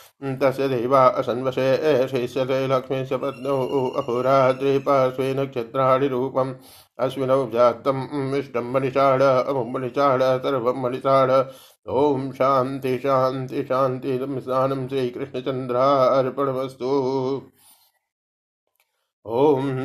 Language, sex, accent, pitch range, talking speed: Hindi, male, native, 130-135 Hz, 60 wpm